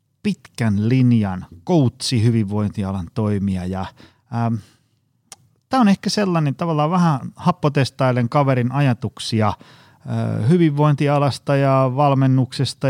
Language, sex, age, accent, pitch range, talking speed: Finnish, male, 30-49, native, 105-135 Hz, 80 wpm